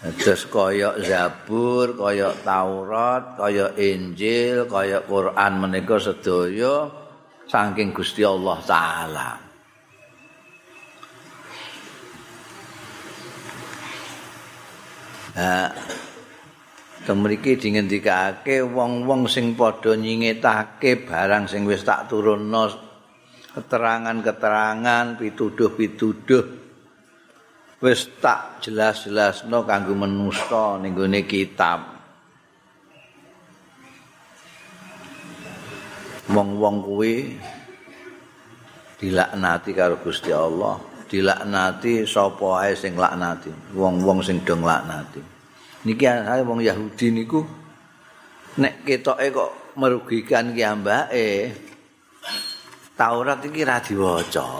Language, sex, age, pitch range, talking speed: Indonesian, male, 50-69, 95-120 Hz, 80 wpm